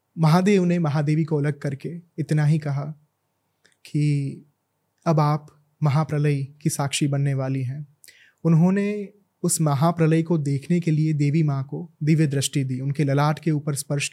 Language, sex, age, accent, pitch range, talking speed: Hindi, male, 20-39, native, 140-160 Hz, 155 wpm